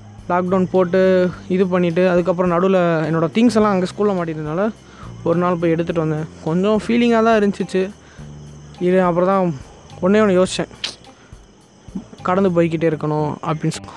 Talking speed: 140 wpm